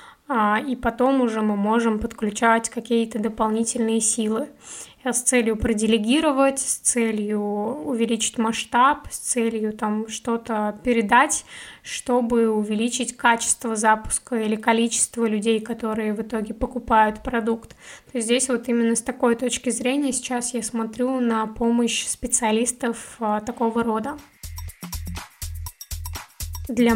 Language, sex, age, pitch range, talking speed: Russian, female, 20-39, 225-245 Hz, 115 wpm